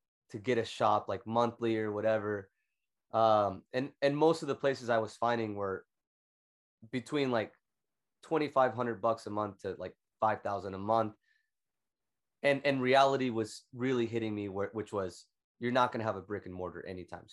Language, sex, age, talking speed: English, male, 20-39, 175 wpm